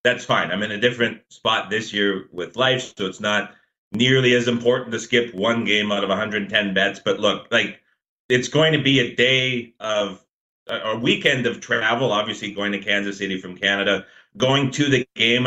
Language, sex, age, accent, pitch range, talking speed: English, male, 30-49, American, 105-130 Hz, 195 wpm